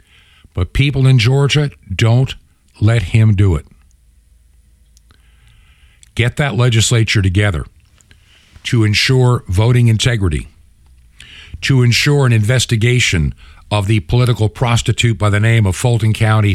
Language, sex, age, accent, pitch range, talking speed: English, male, 60-79, American, 80-130 Hz, 110 wpm